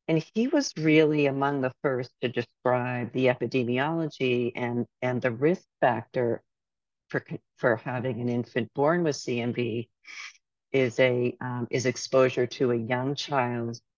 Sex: female